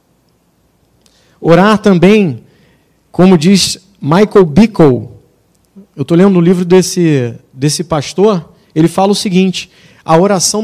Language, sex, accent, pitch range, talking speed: Portuguese, male, Brazilian, 150-205 Hz, 115 wpm